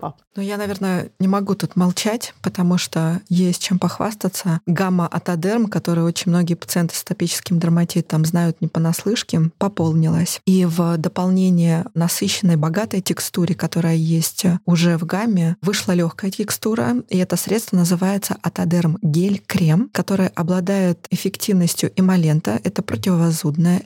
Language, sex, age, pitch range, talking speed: Russian, female, 20-39, 170-195 Hz, 130 wpm